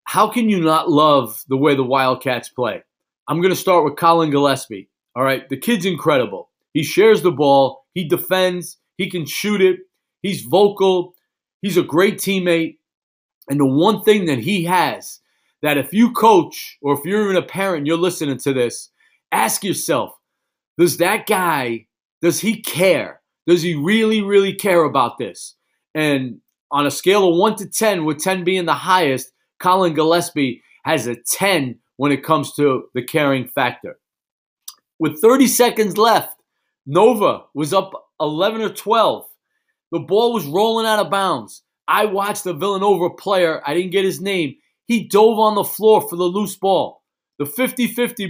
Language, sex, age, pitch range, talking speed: English, male, 40-59, 155-215 Hz, 170 wpm